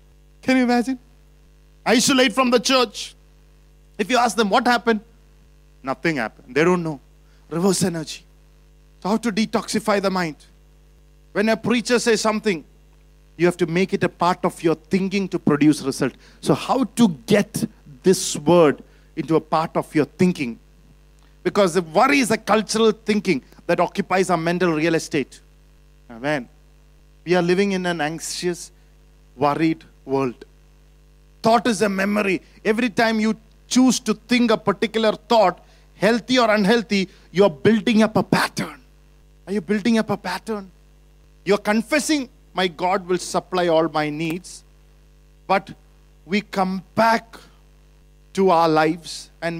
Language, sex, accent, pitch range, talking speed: English, male, Indian, 170-215 Hz, 150 wpm